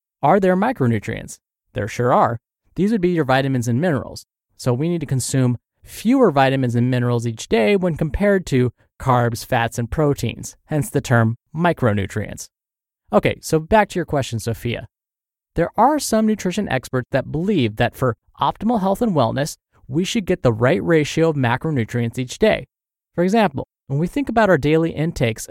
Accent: American